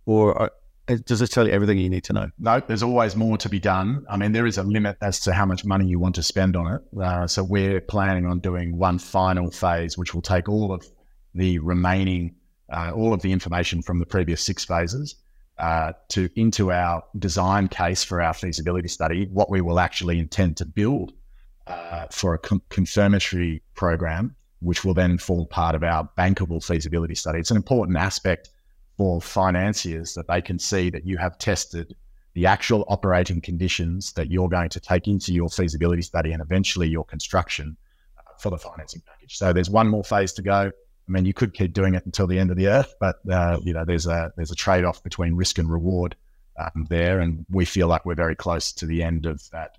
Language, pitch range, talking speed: English, 85-95 Hz, 210 wpm